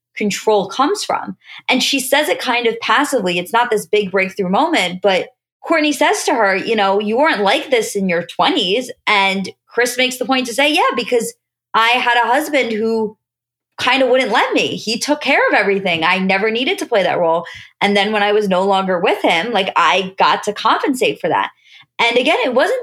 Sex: female